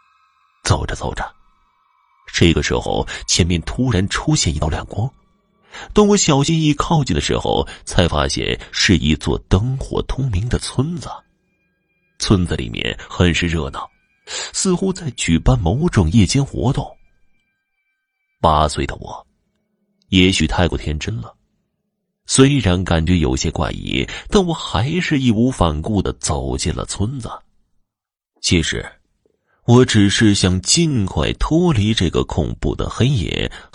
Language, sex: Chinese, male